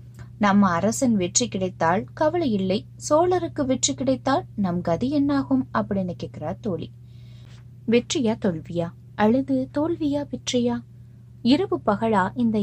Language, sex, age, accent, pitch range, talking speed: Tamil, female, 20-39, native, 160-235 Hz, 110 wpm